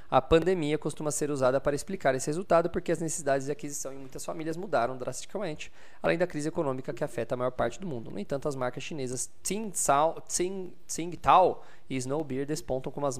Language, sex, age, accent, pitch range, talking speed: Portuguese, male, 20-39, Brazilian, 130-165 Hz, 185 wpm